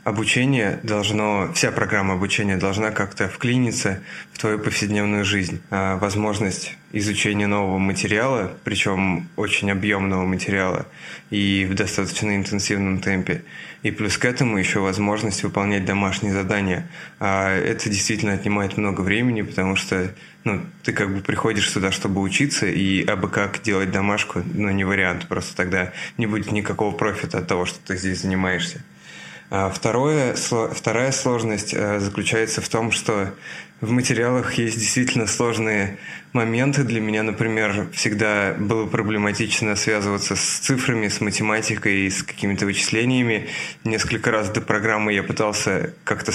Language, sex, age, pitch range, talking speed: Russian, male, 20-39, 100-115 Hz, 130 wpm